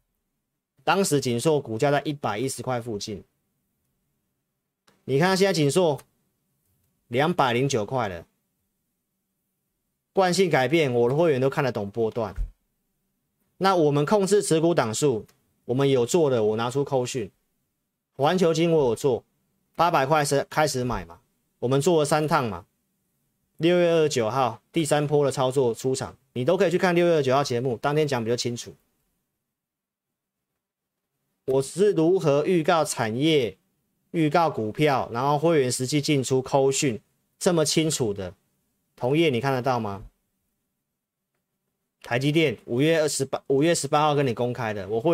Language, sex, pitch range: Chinese, male, 120-160 Hz